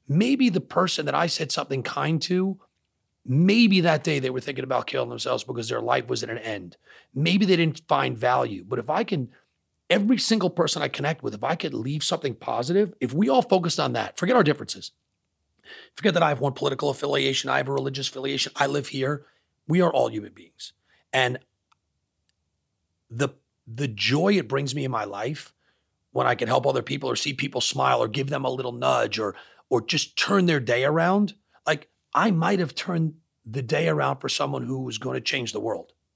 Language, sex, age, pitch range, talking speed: English, male, 40-59, 130-180 Hz, 205 wpm